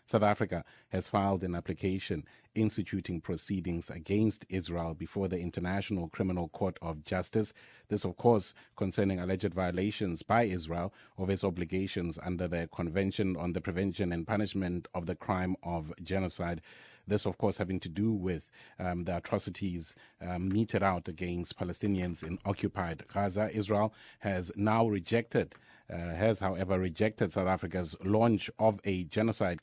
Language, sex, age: English, male, 30-49